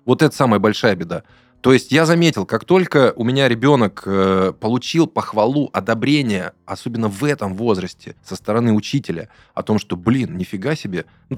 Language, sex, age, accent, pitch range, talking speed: Russian, male, 20-39, native, 105-145 Hz, 170 wpm